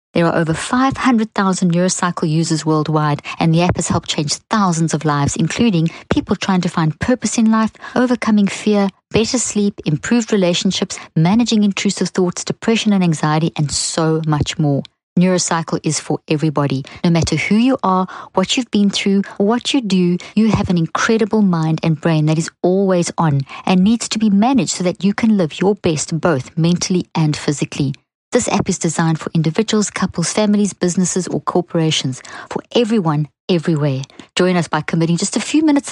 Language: English